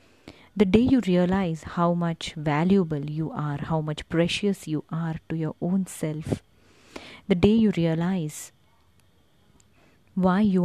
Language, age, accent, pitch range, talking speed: English, 30-49, Indian, 150-190 Hz, 135 wpm